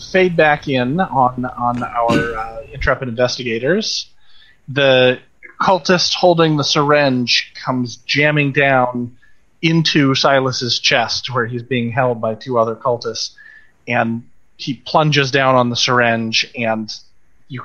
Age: 30-49